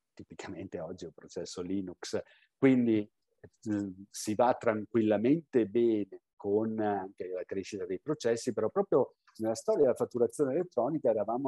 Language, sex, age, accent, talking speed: Italian, male, 50-69, native, 135 wpm